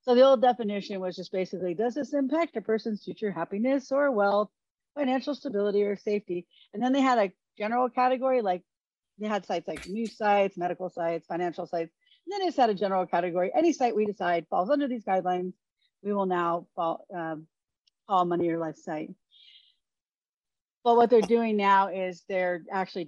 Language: English